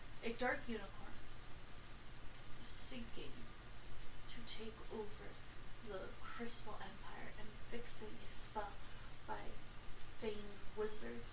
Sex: female